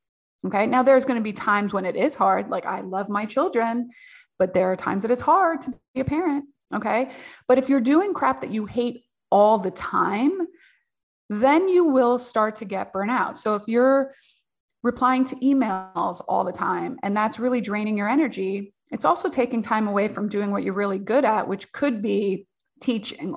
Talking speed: 200 wpm